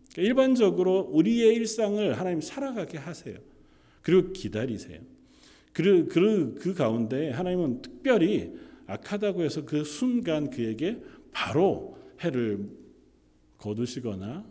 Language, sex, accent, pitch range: Korean, male, native, 105-165 Hz